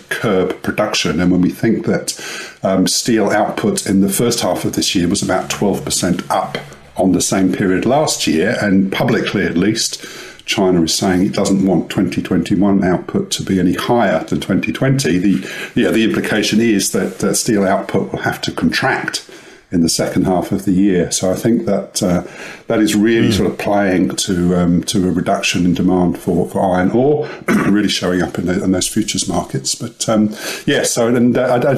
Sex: male